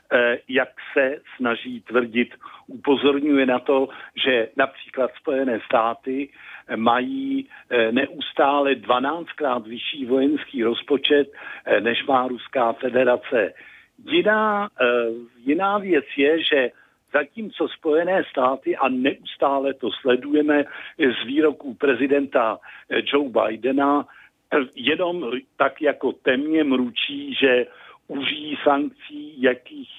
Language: Czech